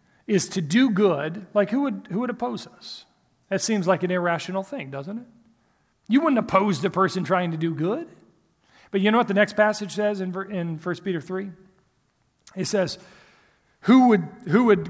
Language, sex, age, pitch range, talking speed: English, male, 40-59, 170-215 Hz, 190 wpm